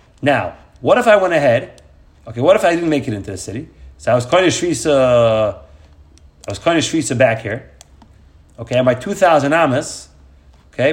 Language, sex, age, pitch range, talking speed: English, male, 30-49, 105-160 Hz, 160 wpm